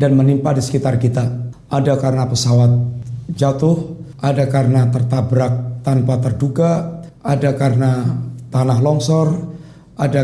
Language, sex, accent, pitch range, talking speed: Indonesian, male, native, 135-165 Hz, 110 wpm